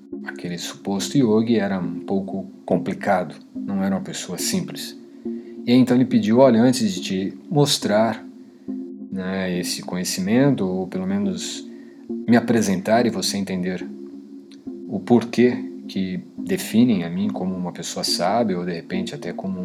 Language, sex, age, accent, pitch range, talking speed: Portuguese, male, 40-59, Brazilian, 90-145 Hz, 145 wpm